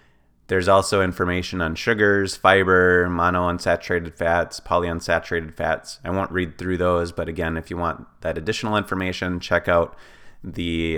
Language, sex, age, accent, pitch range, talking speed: English, male, 30-49, American, 85-105 Hz, 140 wpm